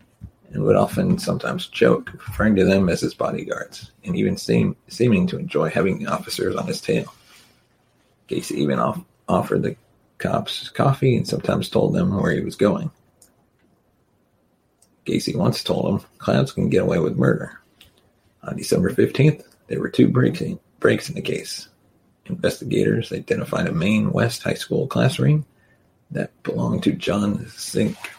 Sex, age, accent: male, 40-59, American